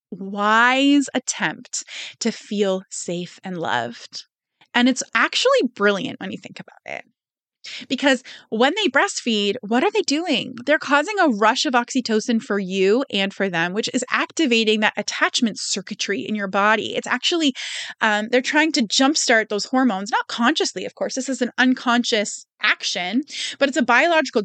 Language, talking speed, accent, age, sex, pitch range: English, 160 wpm, American, 20-39, female, 205-265 Hz